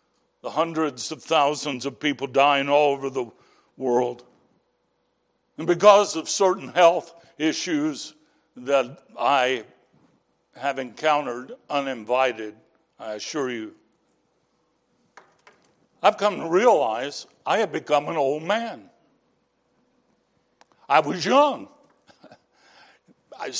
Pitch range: 140-195 Hz